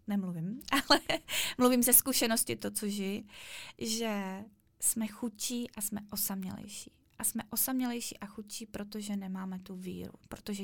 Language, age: Czech, 20-39